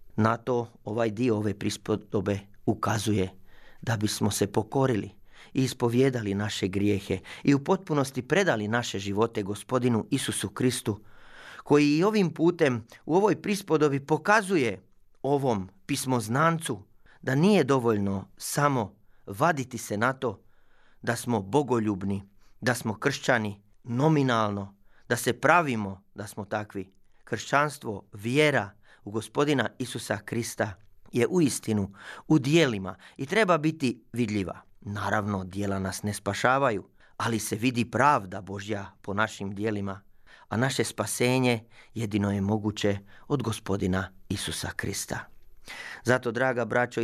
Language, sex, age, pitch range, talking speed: Croatian, male, 40-59, 105-140 Hz, 120 wpm